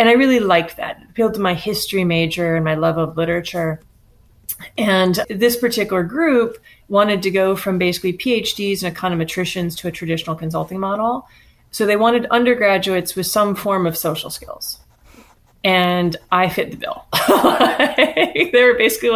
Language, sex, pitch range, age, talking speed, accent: English, female, 180-230 Hz, 30-49, 155 wpm, American